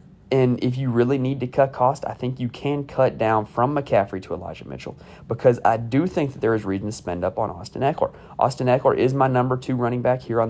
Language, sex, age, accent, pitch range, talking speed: English, male, 30-49, American, 115-145 Hz, 245 wpm